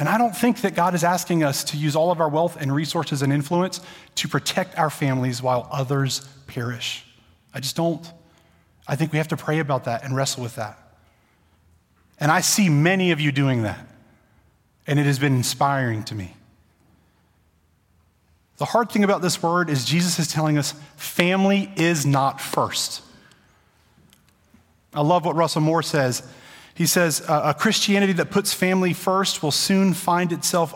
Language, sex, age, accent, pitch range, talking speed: English, male, 30-49, American, 130-180 Hz, 175 wpm